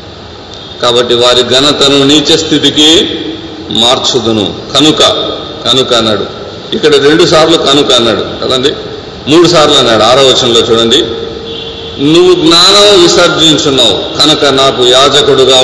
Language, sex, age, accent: Telugu, male, 40-59, native